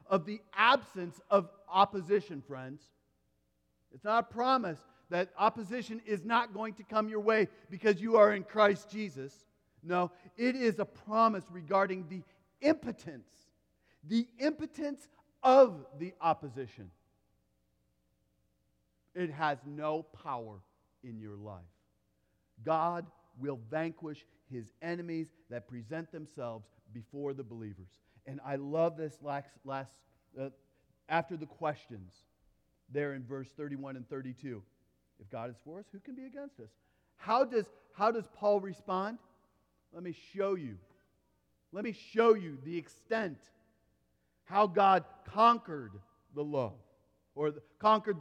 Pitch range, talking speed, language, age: 125-205 Hz, 135 wpm, English, 40-59